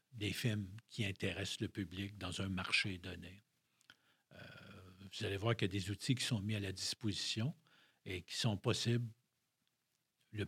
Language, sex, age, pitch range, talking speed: French, male, 50-69, 100-125 Hz, 170 wpm